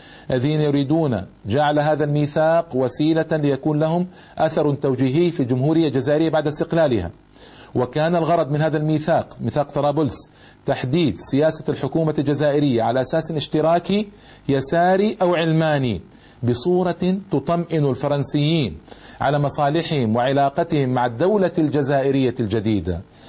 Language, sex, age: Arabic, male, 40-59